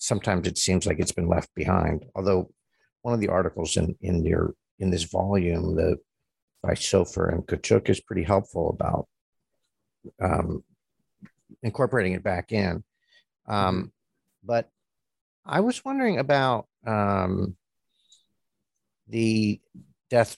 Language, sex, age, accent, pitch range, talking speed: English, male, 50-69, American, 95-120 Hz, 125 wpm